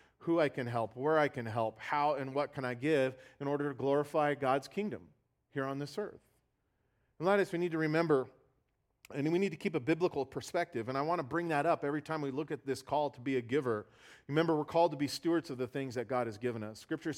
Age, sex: 40-59, male